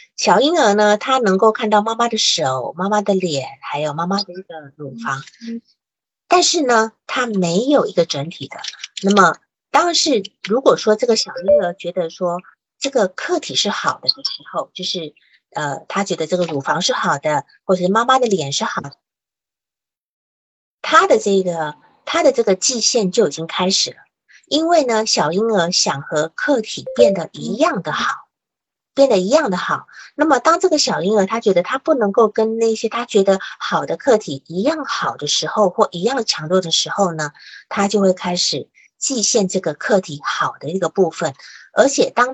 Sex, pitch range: female, 165-230 Hz